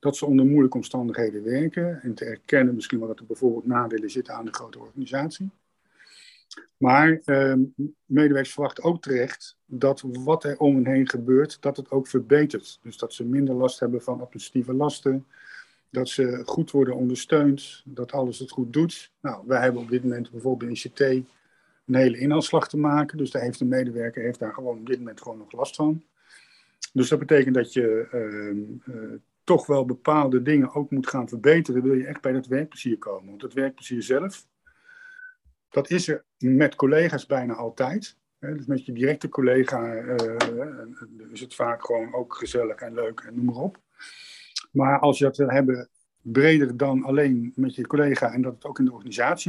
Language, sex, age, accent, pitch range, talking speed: Dutch, male, 50-69, Dutch, 125-150 Hz, 190 wpm